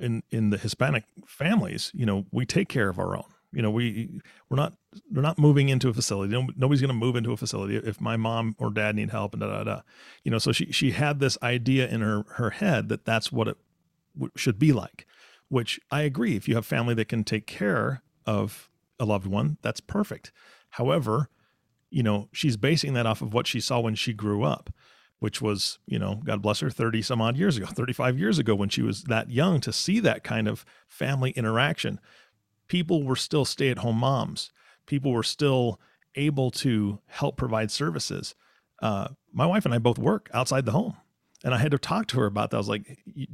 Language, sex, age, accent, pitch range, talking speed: English, male, 40-59, American, 110-140 Hz, 220 wpm